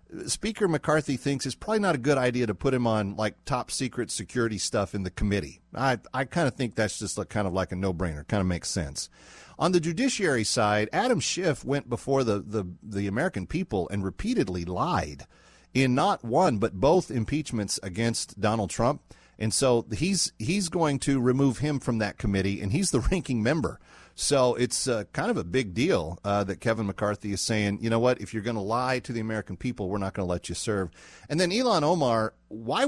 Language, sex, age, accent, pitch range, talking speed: English, male, 40-59, American, 100-135 Hz, 210 wpm